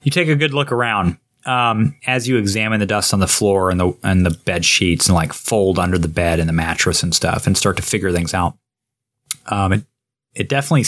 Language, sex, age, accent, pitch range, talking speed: English, male, 30-49, American, 95-125 Hz, 230 wpm